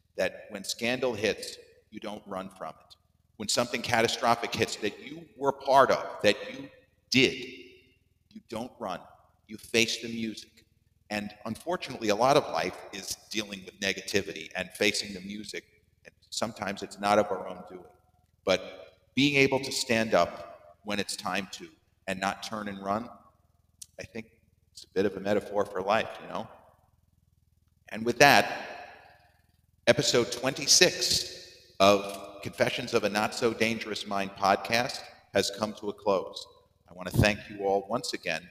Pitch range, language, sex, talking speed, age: 95-110 Hz, English, male, 160 wpm, 40-59